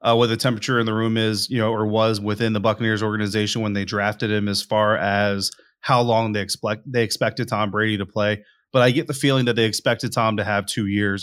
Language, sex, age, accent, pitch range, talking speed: English, male, 30-49, American, 105-125 Hz, 250 wpm